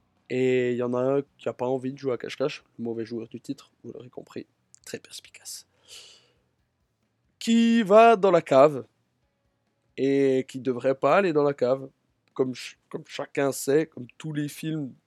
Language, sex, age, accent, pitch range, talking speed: French, male, 20-39, French, 135-170 Hz, 185 wpm